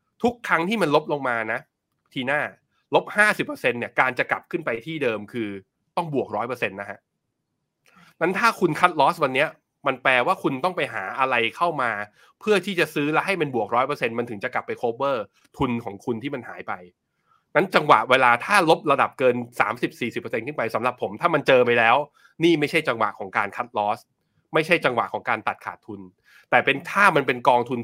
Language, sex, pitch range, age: Thai, male, 120-170 Hz, 20-39